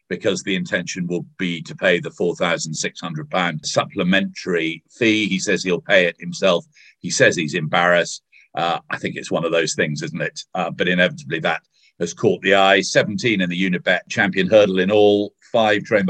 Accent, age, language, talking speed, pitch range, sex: British, 50-69, English, 185 wpm, 95-115 Hz, male